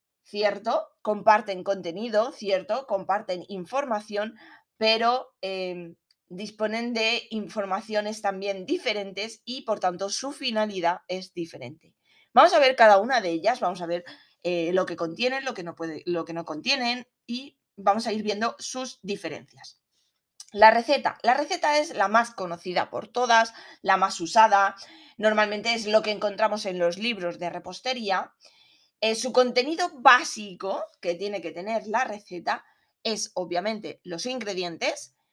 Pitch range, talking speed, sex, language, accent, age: 190-240 Hz, 140 wpm, female, Spanish, Spanish, 20-39